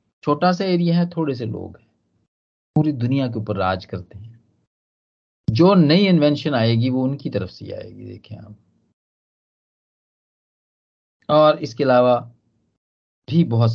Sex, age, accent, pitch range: male, 50-69, native, 105-170 Hz